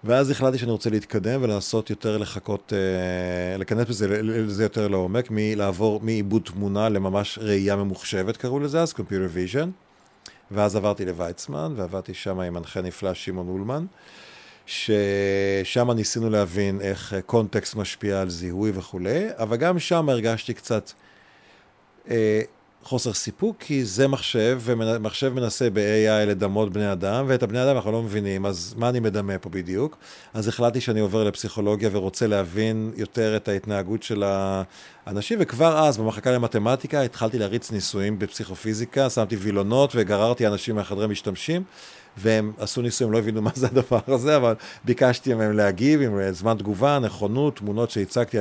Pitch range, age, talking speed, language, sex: 100-120 Hz, 40-59, 145 wpm, Hebrew, male